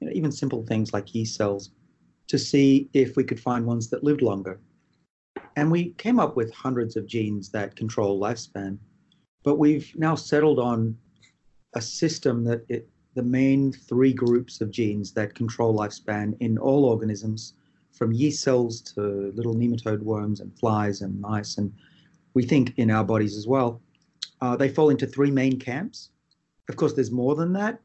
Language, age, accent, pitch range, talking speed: English, 30-49, Australian, 110-135 Hz, 170 wpm